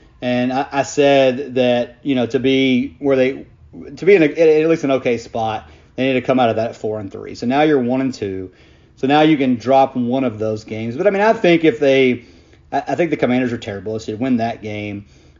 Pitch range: 110-135 Hz